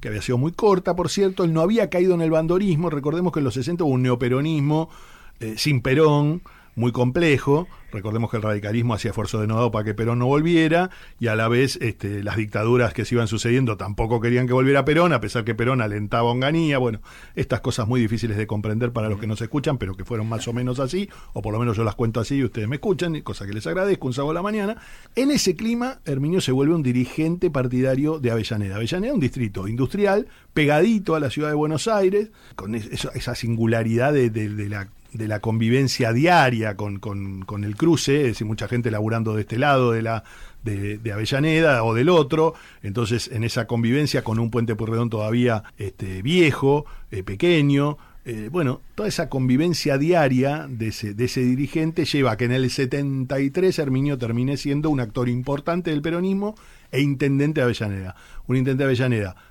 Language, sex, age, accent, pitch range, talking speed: Spanish, male, 40-59, Argentinian, 115-150 Hz, 205 wpm